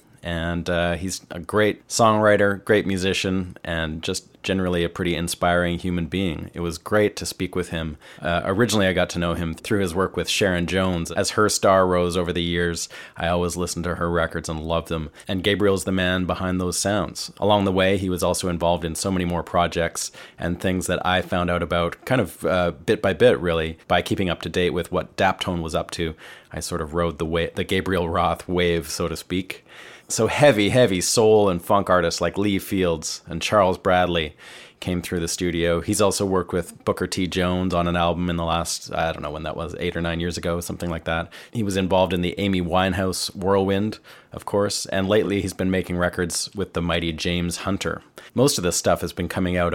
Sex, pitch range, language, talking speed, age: male, 85-95 Hz, English, 220 wpm, 30-49